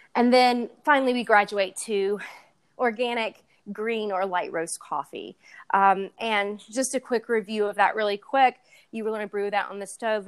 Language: English